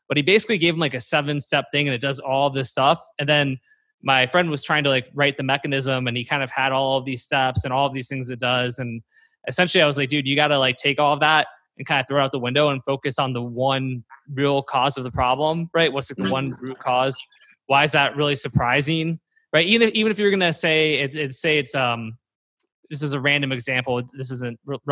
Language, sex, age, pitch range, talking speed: English, male, 20-39, 125-150 Hz, 260 wpm